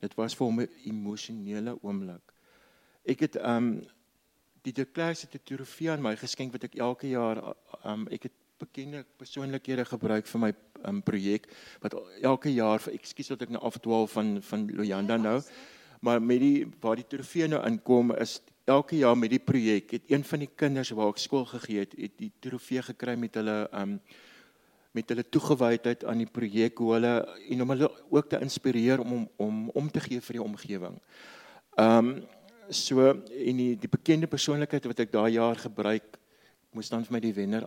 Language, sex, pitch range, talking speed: English, male, 110-130 Hz, 180 wpm